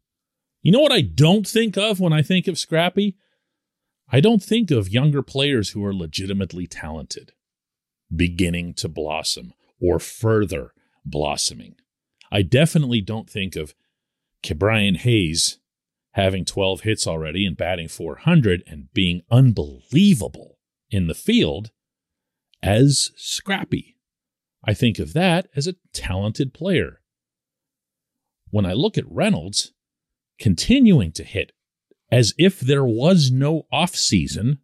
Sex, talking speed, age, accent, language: male, 125 wpm, 40-59, American, English